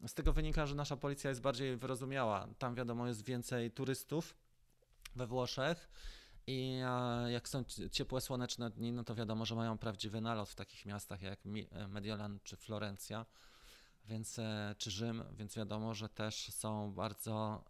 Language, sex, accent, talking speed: Polish, male, native, 155 wpm